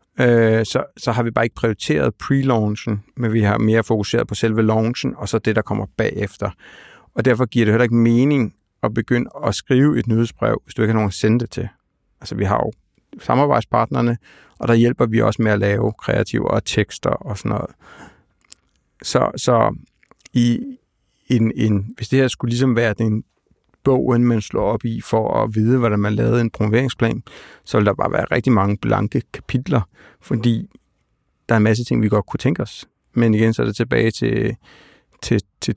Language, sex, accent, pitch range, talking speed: Danish, male, native, 110-120 Hz, 195 wpm